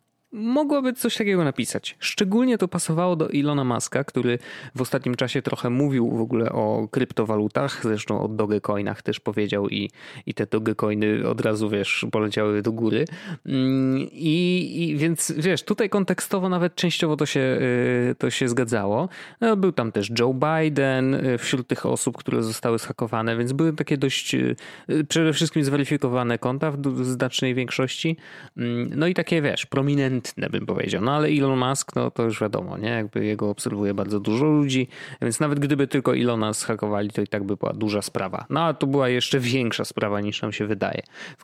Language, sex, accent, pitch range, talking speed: Polish, male, native, 115-160 Hz, 170 wpm